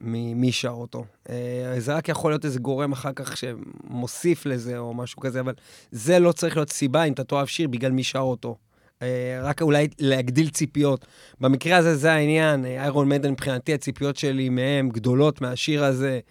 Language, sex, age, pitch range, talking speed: Hebrew, male, 30-49, 140-185 Hz, 175 wpm